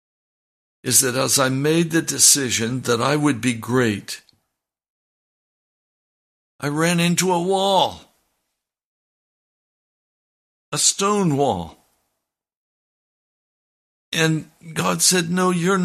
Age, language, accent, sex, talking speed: 60-79, English, American, male, 95 wpm